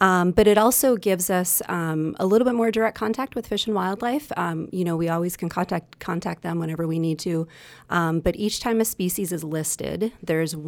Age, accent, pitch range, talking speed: 30-49, American, 160-190 Hz, 220 wpm